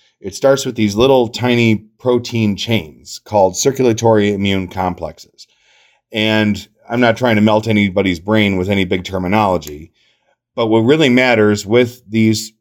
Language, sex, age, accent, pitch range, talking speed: English, male, 30-49, American, 100-120 Hz, 145 wpm